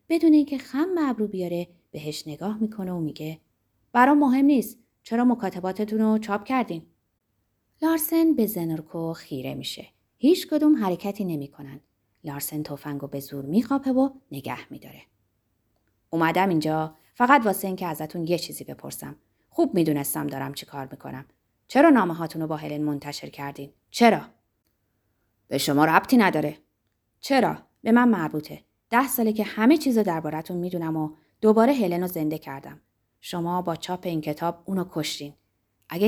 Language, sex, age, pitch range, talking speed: Persian, female, 30-49, 145-220 Hz, 140 wpm